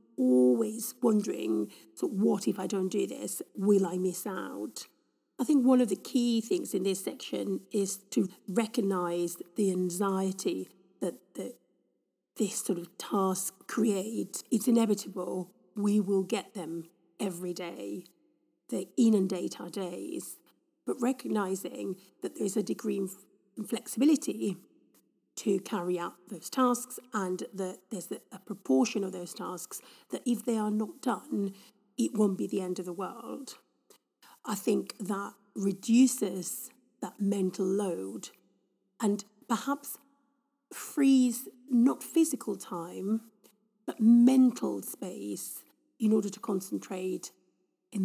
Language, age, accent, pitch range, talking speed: English, 40-59, British, 185-235 Hz, 130 wpm